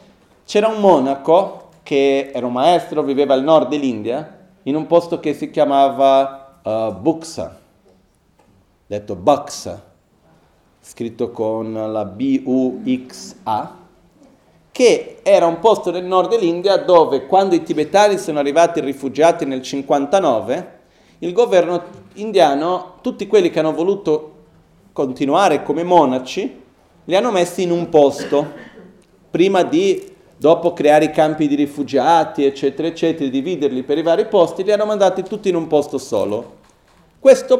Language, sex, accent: Italian, male, native